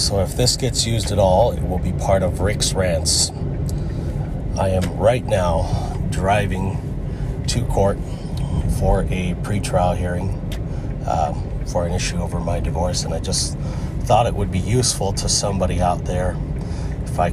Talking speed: 160 wpm